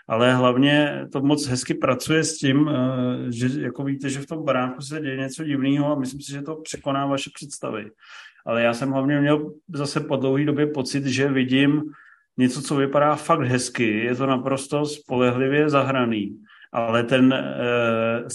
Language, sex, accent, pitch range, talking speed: Czech, male, native, 130-150 Hz, 170 wpm